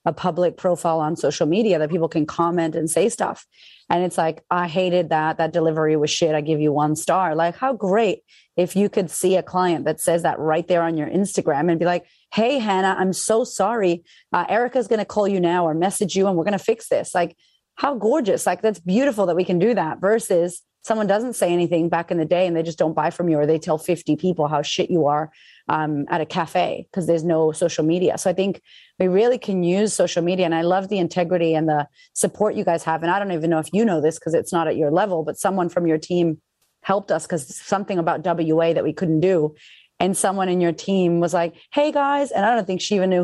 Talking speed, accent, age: 250 wpm, American, 30-49